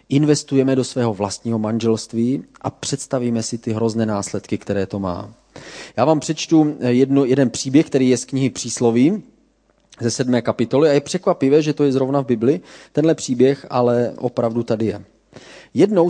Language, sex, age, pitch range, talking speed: Czech, male, 30-49, 110-140 Hz, 165 wpm